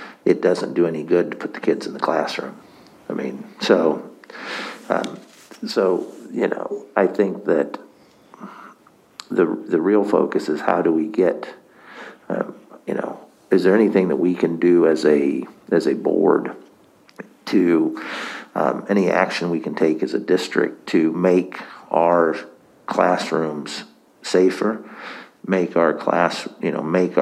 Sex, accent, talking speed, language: male, American, 150 wpm, English